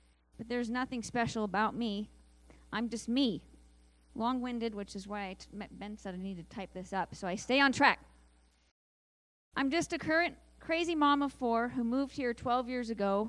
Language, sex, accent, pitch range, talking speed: English, female, American, 180-245 Hz, 180 wpm